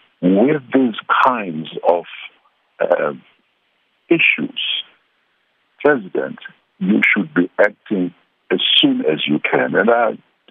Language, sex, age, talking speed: English, male, 60-79, 105 wpm